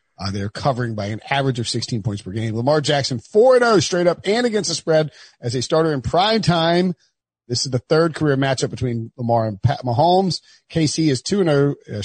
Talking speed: 210 wpm